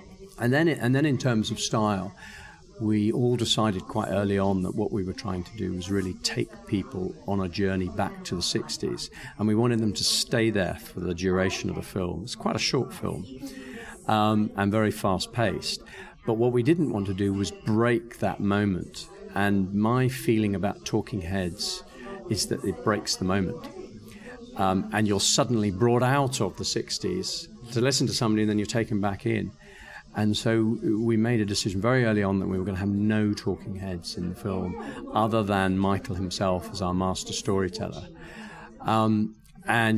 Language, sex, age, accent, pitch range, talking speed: English, male, 50-69, British, 95-115 Hz, 190 wpm